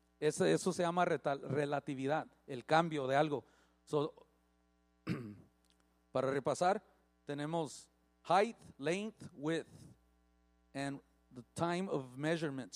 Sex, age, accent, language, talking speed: male, 40-59, Mexican, Spanish, 105 wpm